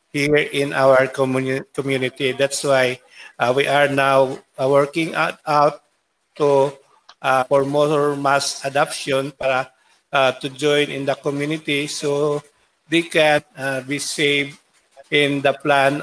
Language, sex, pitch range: English, male, 135-150 Hz